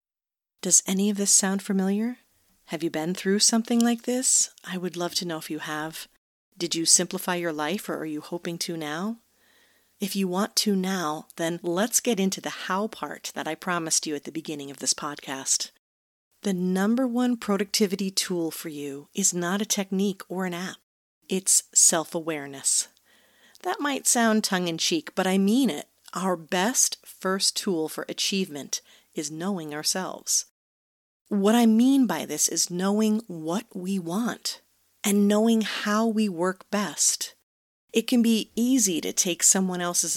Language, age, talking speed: English, 40-59, 165 wpm